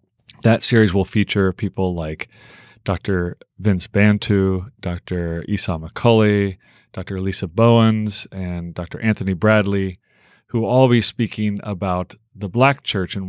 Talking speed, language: 130 wpm, English